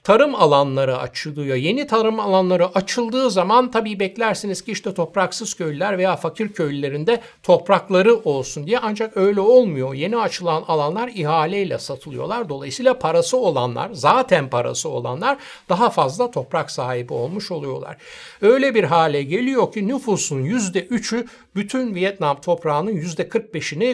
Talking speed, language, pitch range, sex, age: 130 wpm, Turkish, 155-225 Hz, male, 60-79